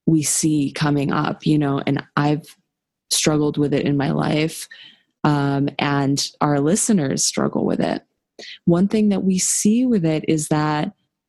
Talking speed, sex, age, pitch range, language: 160 wpm, female, 20-39, 145-180 Hz, English